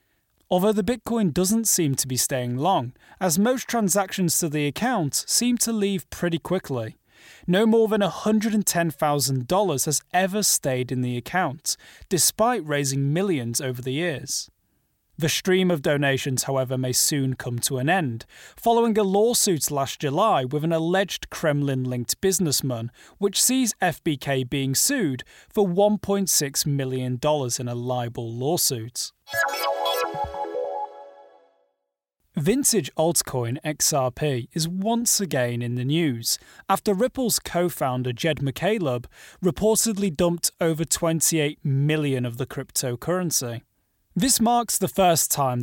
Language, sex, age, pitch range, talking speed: English, male, 30-49, 130-190 Hz, 125 wpm